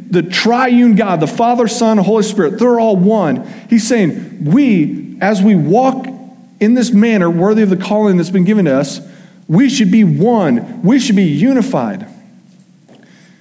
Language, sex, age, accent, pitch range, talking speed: English, male, 40-59, American, 170-225 Hz, 165 wpm